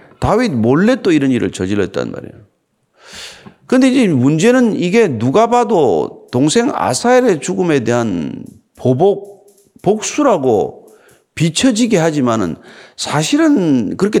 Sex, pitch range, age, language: male, 155-240 Hz, 40-59, Korean